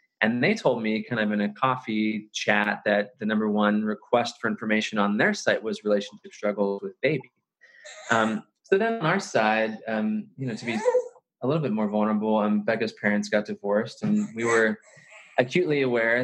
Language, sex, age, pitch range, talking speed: English, male, 20-39, 105-130 Hz, 190 wpm